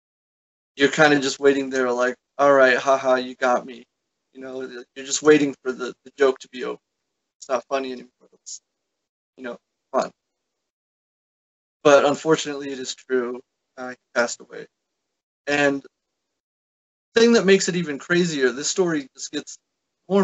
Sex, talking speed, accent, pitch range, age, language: male, 165 wpm, American, 130-175 Hz, 20-39, English